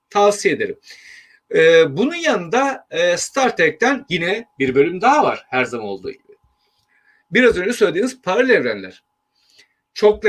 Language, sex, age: Turkish, male, 40-59